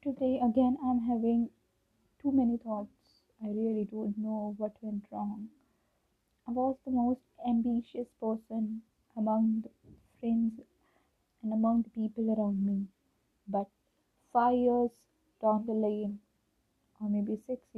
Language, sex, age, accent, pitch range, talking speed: Hindi, female, 20-39, native, 215-260 Hz, 130 wpm